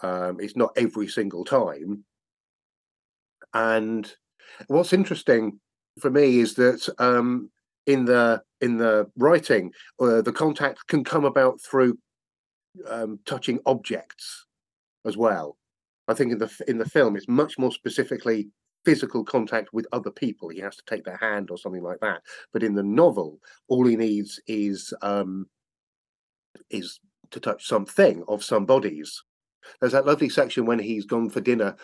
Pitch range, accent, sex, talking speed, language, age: 100-125 Hz, British, male, 155 wpm, English, 50-69